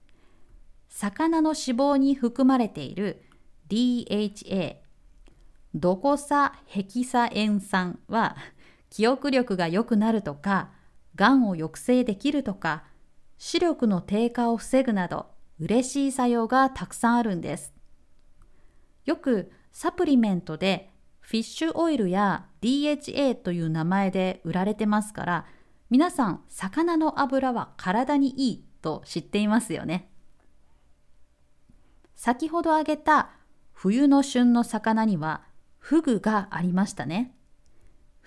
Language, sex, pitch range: Japanese, female, 175-250 Hz